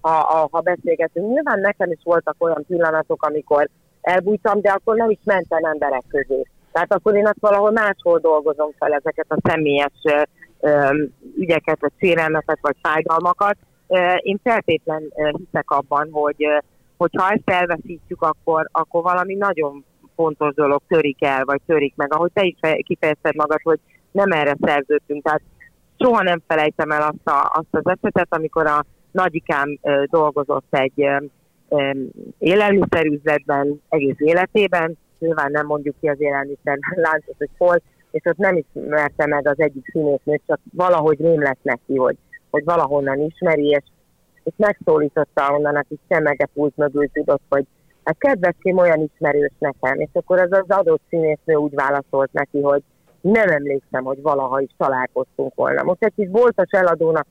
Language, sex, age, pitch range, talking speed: Hungarian, female, 30-49, 145-175 Hz, 150 wpm